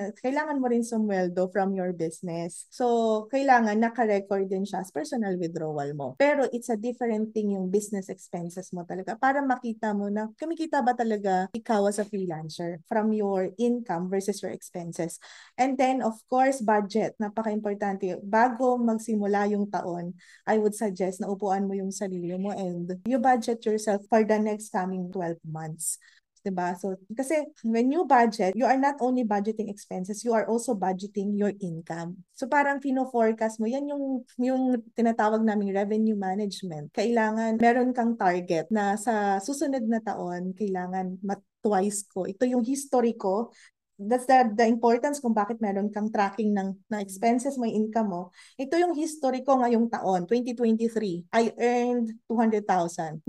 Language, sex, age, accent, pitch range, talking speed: Filipino, female, 20-39, native, 190-245 Hz, 165 wpm